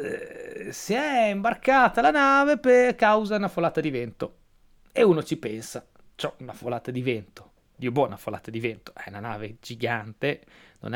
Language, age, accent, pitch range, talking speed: Italian, 30-49, native, 140-205 Hz, 175 wpm